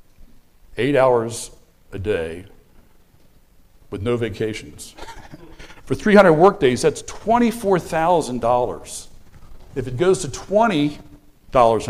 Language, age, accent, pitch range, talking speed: English, 60-79, American, 125-185 Hz, 85 wpm